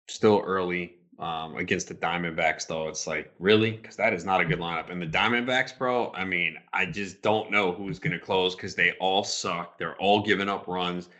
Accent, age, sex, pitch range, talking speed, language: American, 30-49, male, 95-125 Hz, 210 wpm, English